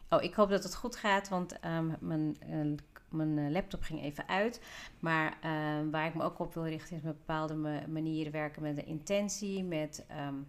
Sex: female